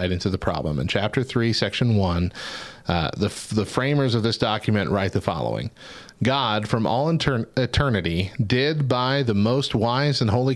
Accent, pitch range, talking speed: American, 100-125 Hz, 175 wpm